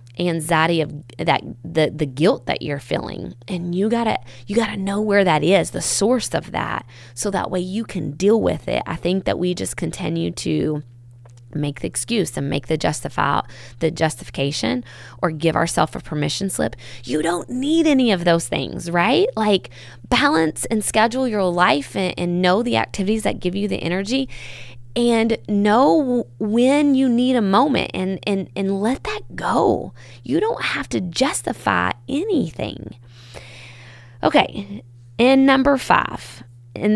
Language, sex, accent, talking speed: English, female, American, 165 wpm